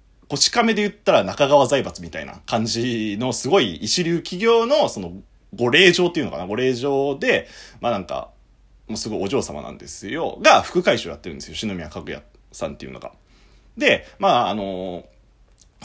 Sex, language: male, Japanese